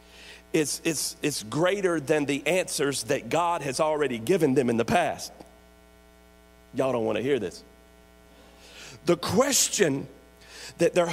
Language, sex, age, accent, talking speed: English, male, 50-69, American, 135 wpm